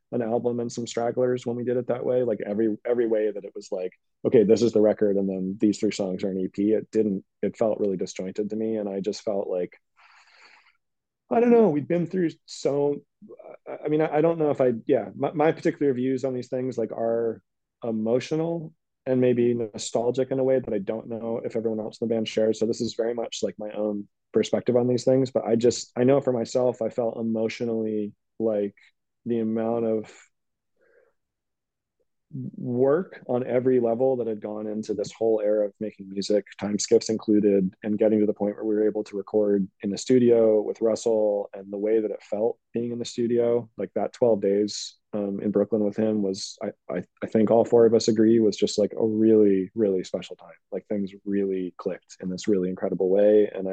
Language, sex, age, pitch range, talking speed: English, male, 30-49, 105-125 Hz, 215 wpm